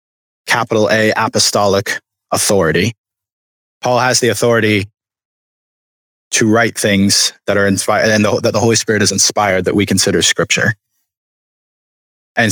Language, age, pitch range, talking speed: English, 20-39, 100-115 Hz, 125 wpm